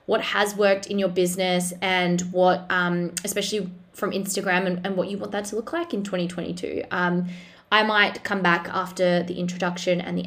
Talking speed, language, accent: 195 wpm, English, Australian